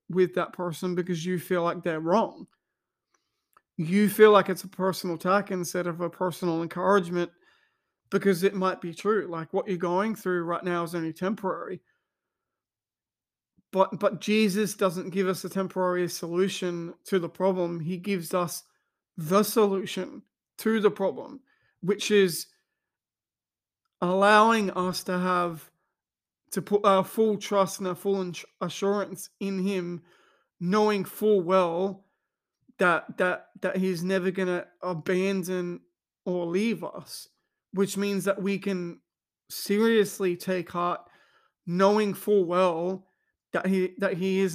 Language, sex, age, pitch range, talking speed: English, male, 40-59, 180-195 Hz, 135 wpm